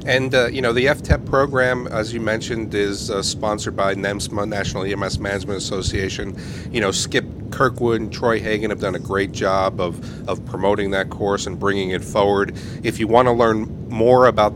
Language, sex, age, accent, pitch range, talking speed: English, male, 40-59, American, 100-115 Hz, 195 wpm